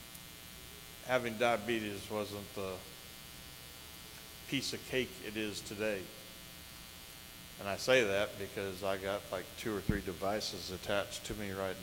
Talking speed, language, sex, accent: 130 wpm, English, male, American